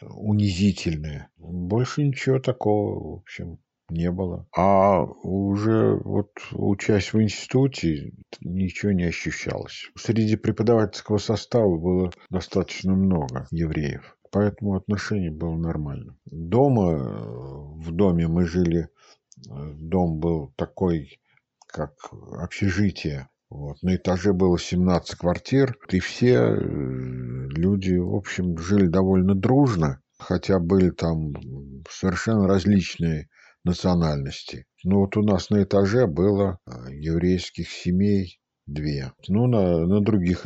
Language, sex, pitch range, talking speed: Russian, male, 85-105 Hz, 105 wpm